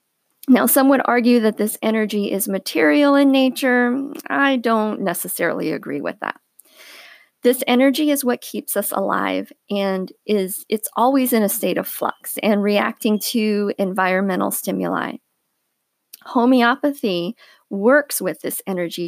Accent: American